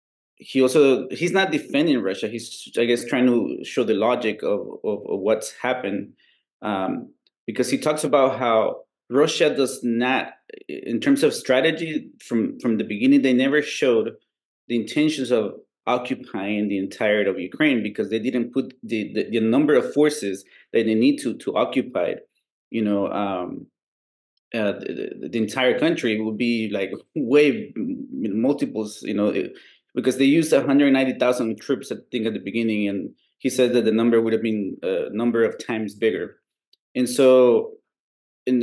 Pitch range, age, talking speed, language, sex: 115-165 Hz, 30-49, 165 wpm, English, male